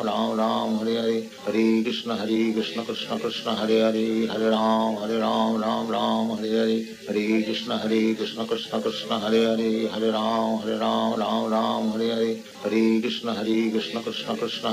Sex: male